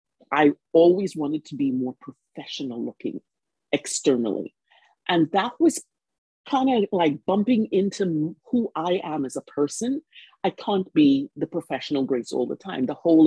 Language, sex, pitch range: English, female, 145-235 Hz